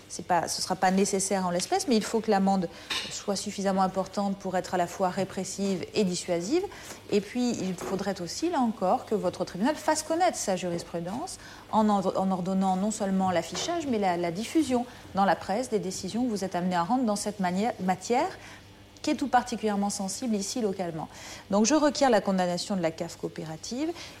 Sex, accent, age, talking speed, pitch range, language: female, French, 40-59, 190 wpm, 185-225 Hz, French